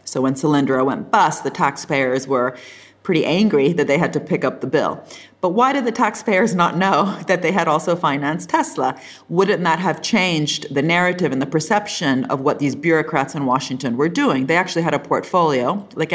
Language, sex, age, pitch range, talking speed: English, female, 40-59, 140-170 Hz, 200 wpm